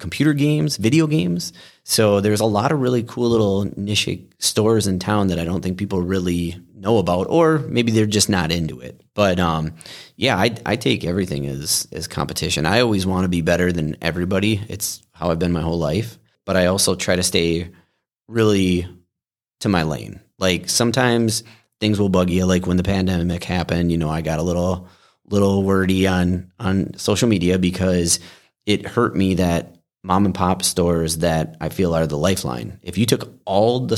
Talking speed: 195 wpm